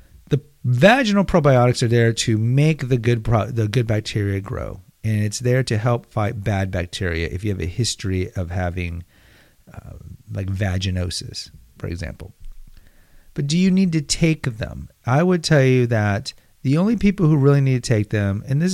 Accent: American